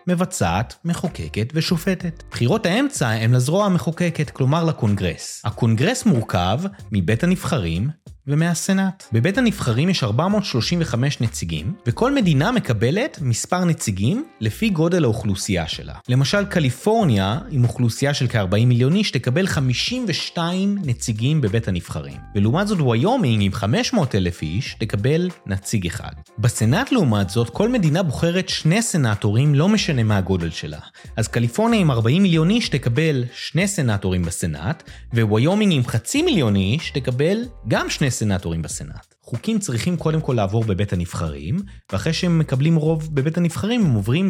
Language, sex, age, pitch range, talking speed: Hebrew, male, 30-49, 105-170 Hz, 130 wpm